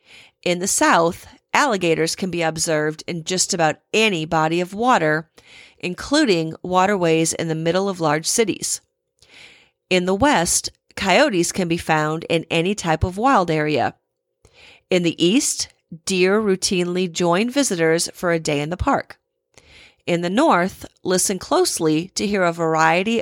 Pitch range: 165-210 Hz